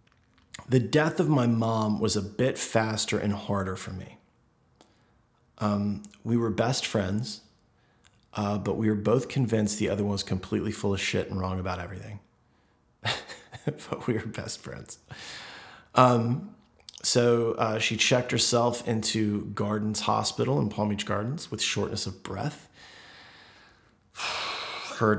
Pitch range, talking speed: 100-120 Hz, 140 wpm